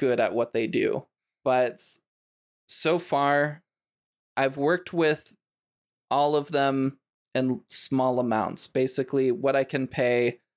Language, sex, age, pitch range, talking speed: English, male, 20-39, 120-140 Hz, 125 wpm